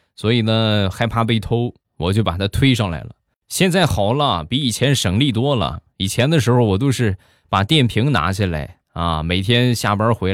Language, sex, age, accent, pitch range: Chinese, male, 20-39, native, 90-125 Hz